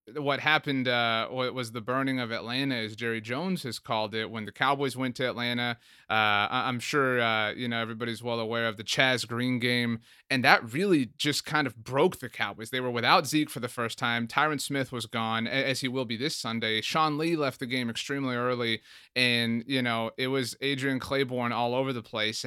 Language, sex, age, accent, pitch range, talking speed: English, male, 30-49, American, 115-135 Hz, 215 wpm